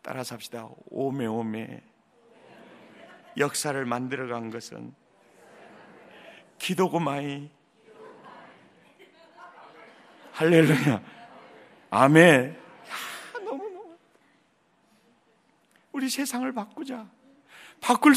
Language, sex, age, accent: Korean, male, 40-59, native